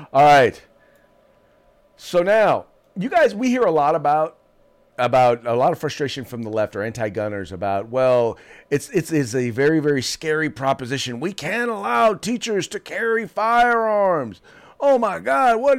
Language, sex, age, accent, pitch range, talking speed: English, male, 40-59, American, 135-195 Hz, 160 wpm